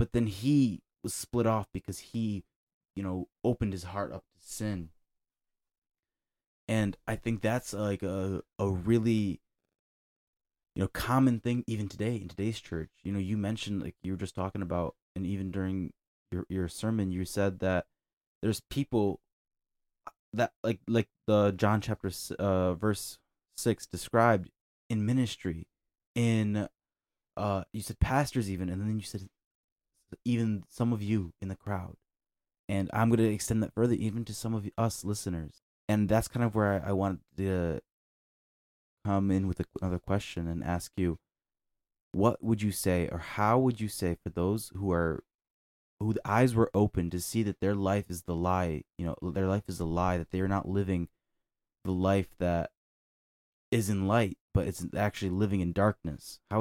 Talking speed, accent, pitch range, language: 175 wpm, American, 90-110 Hz, English